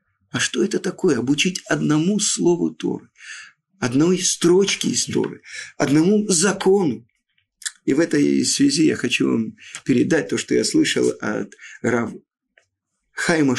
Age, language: 50-69, Russian